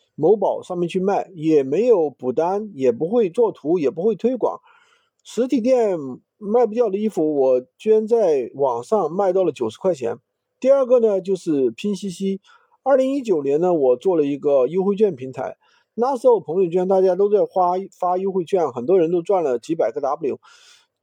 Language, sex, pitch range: Chinese, male, 175-280 Hz